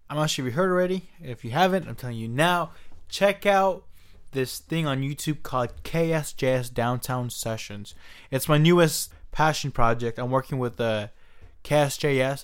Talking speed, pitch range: 165 wpm, 115-140 Hz